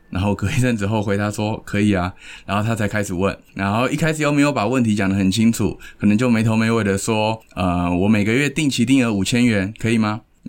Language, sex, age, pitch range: Chinese, male, 20-39, 95-125 Hz